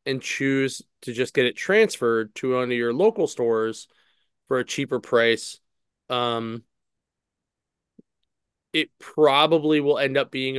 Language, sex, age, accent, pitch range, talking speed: English, male, 20-39, American, 120-140 Hz, 135 wpm